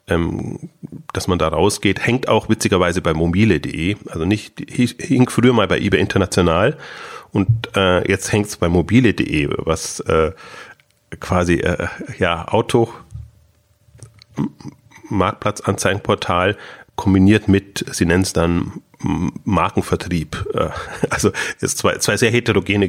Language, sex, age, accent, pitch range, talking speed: German, male, 30-49, German, 95-115 Hz, 120 wpm